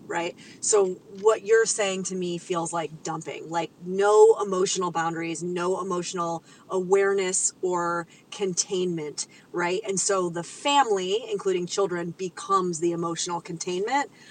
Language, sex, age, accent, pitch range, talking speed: English, female, 30-49, American, 175-215 Hz, 125 wpm